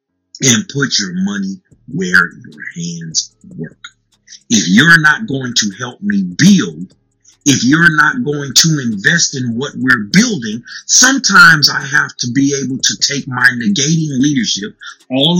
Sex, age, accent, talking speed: male, 50-69, American, 150 wpm